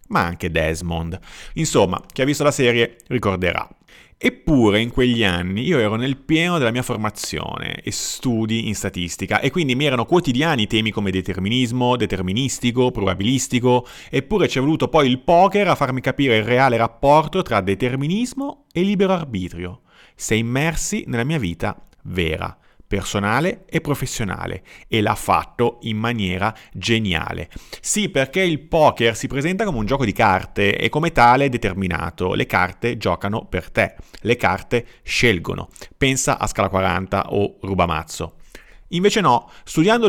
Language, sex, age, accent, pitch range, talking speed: Italian, male, 30-49, native, 100-150 Hz, 150 wpm